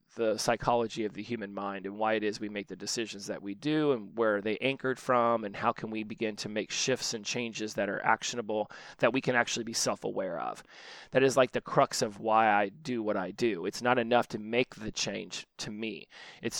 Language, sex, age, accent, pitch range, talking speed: English, male, 30-49, American, 110-135 Hz, 235 wpm